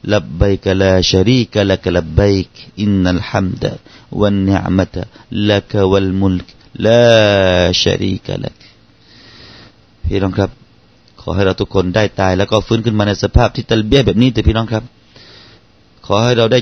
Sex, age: male, 30-49